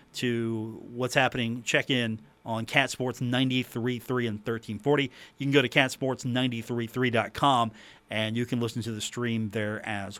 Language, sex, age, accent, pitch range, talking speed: English, male, 40-59, American, 120-140 Hz, 175 wpm